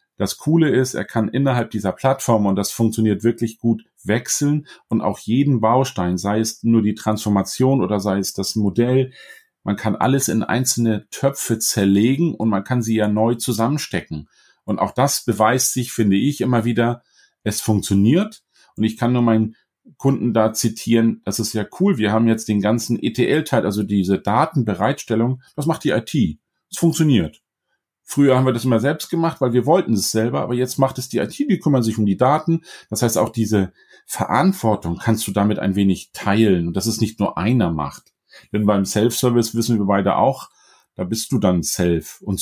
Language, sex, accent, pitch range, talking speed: German, male, German, 105-130 Hz, 190 wpm